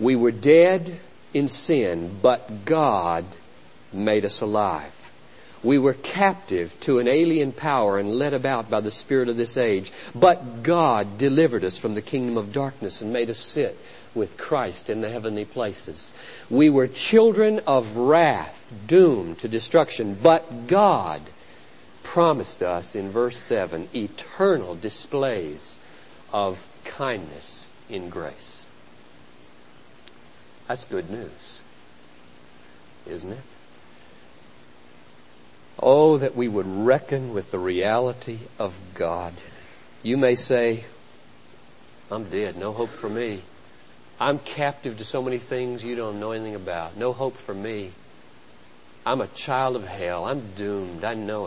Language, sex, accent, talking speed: English, male, American, 135 wpm